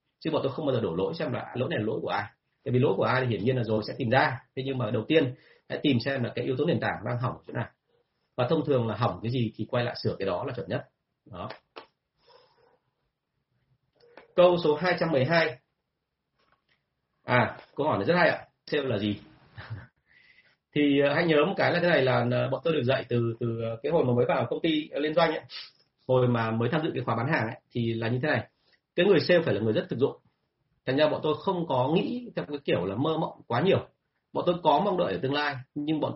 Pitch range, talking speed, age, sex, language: 115-150 Hz, 250 wpm, 30-49, male, Vietnamese